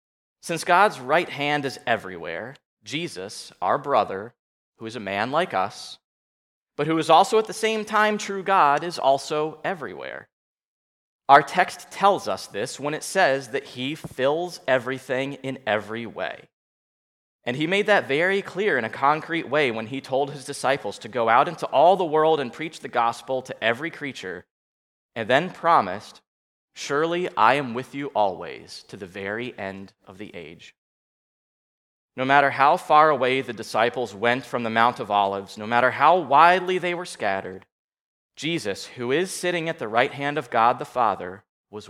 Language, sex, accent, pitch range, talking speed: English, male, American, 115-160 Hz, 175 wpm